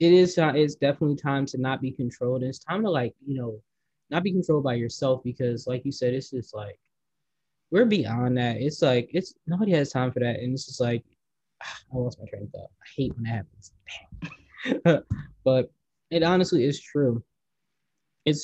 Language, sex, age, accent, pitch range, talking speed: English, male, 20-39, American, 125-140 Hz, 200 wpm